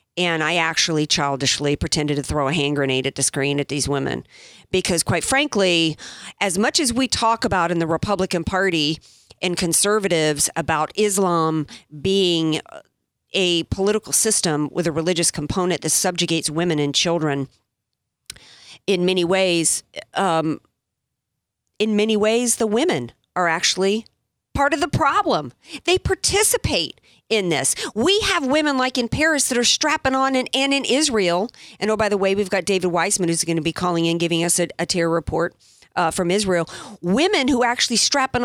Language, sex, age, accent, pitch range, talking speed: English, female, 40-59, American, 165-235 Hz, 165 wpm